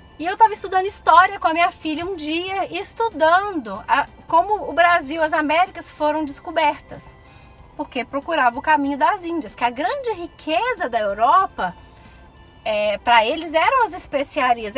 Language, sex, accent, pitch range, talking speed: Portuguese, female, Brazilian, 275-365 Hz, 160 wpm